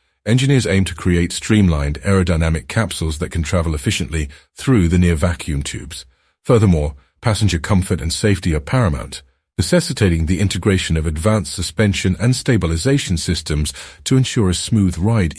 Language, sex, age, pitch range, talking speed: English, male, 50-69, 75-100 Hz, 140 wpm